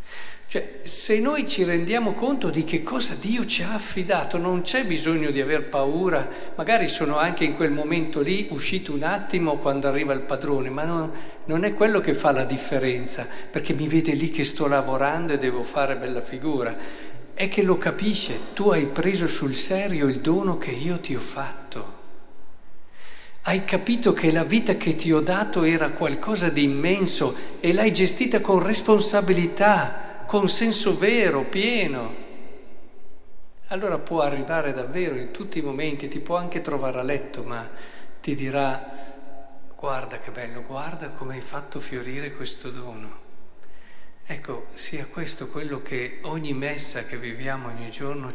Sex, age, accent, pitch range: male, 50-69, native, 135-185 Hz